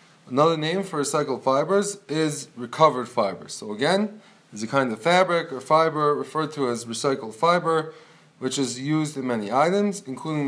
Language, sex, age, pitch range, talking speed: English, male, 20-39, 145-175 Hz, 165 wpm